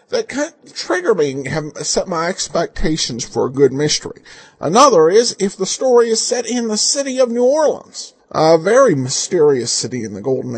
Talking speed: 180 wpm